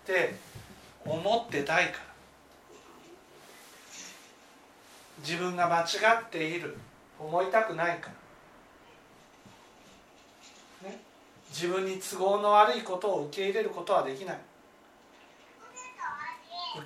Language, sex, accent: Japanese, male, native